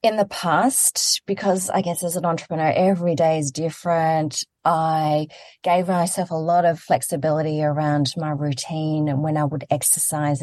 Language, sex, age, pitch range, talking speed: English, female, 30-49, 150-175 Hz, 160 wpm